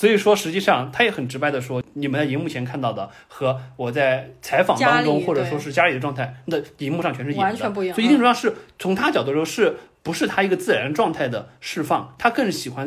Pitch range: 130-180 Hz